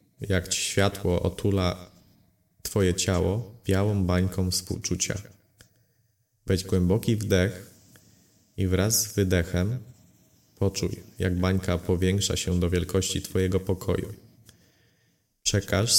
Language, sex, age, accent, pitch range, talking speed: Polish, male, 20-39, native, 95-105 Hz, 95 wpm